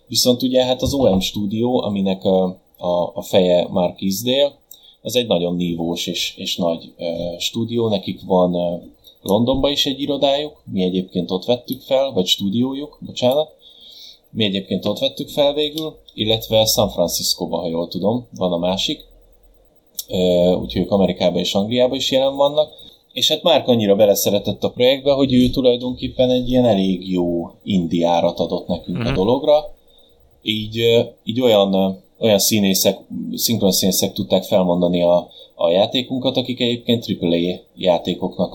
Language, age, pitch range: Hungarian, 20-39, 90-125 Hz